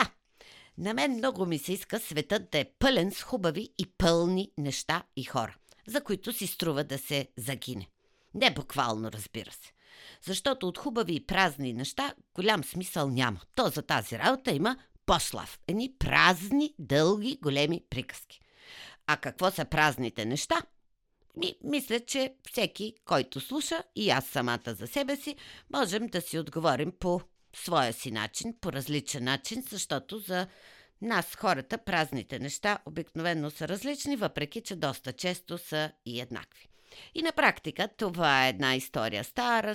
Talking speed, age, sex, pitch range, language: 150 wpm, 50-69, female, 145-230 Hz, Bulgarian